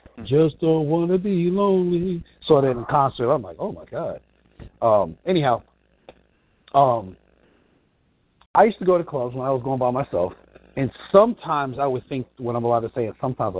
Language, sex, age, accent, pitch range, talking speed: English, male, 50-69, American, 110-150 Hz, 180 wpm